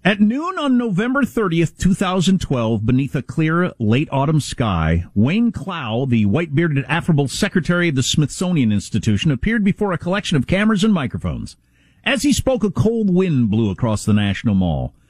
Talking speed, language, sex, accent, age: 165 wpm, English, male, American, 50-69